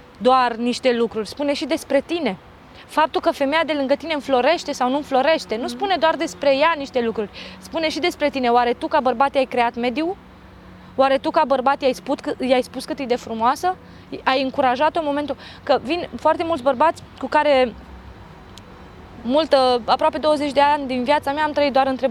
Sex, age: female, 20-39